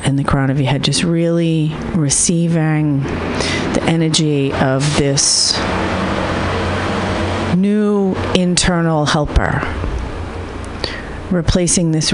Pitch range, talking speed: 125-170 Hz, 90 wpm